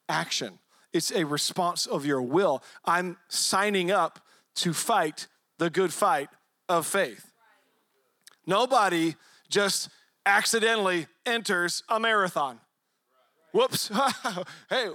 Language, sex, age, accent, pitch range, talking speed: English, male, 40-59, American, 175-235 Hz, 95 wpm